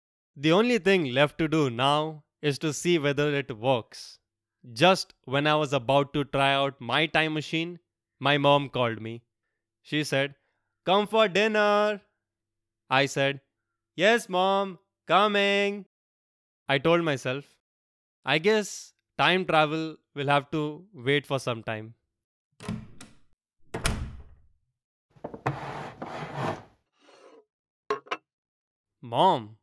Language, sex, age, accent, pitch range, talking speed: English, male, 20-39, Indian, 125-165 Hz, 105 wpm